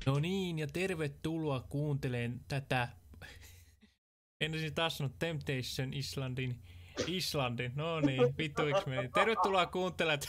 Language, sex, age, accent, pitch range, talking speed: Finnish, male, 20-39, native, 125-170 Hz, 100 wpm